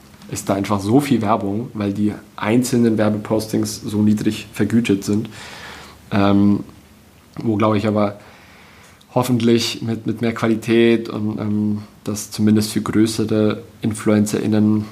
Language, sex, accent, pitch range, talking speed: German, male, German, 105-115 Hz, 125 wpm